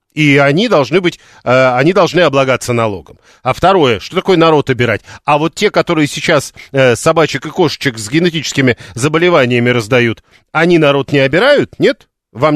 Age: 40-59